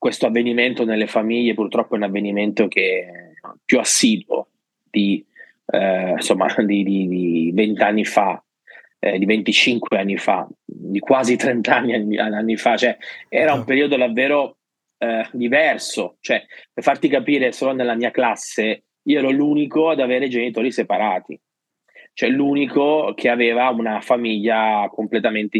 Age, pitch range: 20-39, 110-135 Hz